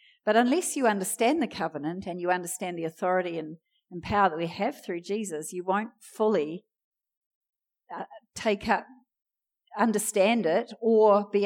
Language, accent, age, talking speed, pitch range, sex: English, Australian, 40-59, 150 wpm, 175-230 Hz, female